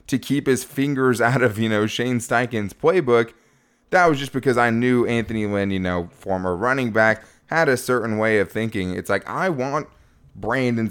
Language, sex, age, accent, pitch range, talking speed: English, male, 20-39, American, 105-130 Hz, 195 wpm